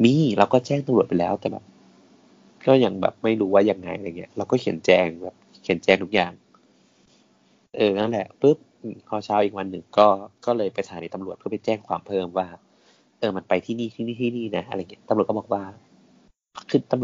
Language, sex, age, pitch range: Thai, male, 20-39, 90-120 Hz